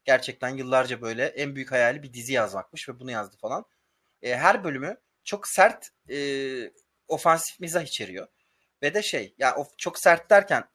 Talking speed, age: 165 wpm, 30-49